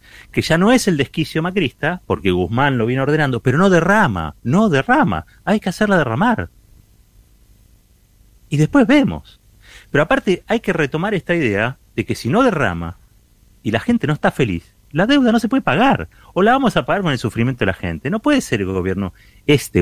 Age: 30-49